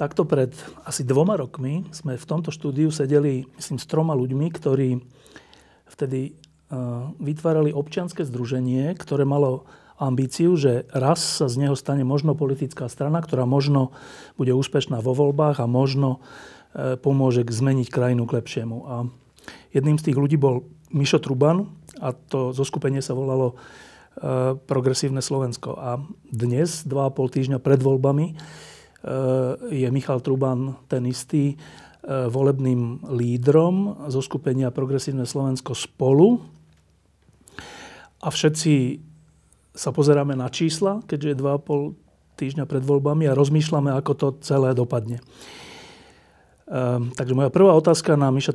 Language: Slovak